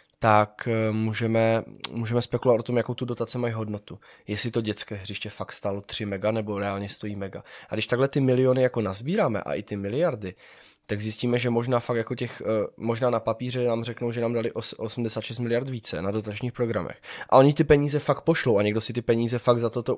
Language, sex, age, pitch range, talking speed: Czech, male, 20-39, 105-120 Hz, 200 wpm